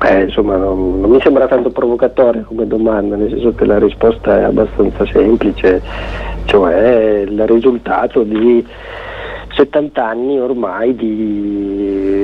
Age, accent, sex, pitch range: 50-69, native, male, 100-115 Hz